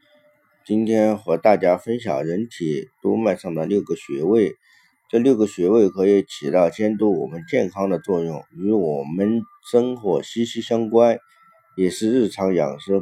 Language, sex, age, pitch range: Chinese, male, 50-69, 100-170 Hz